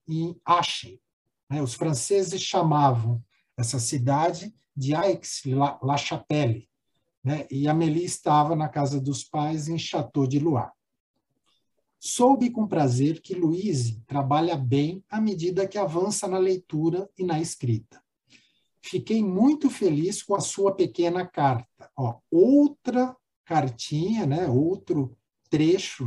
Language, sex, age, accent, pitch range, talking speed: Portuguese, male, 60-79, Brazilian, 125-170 Hz, 115 wpm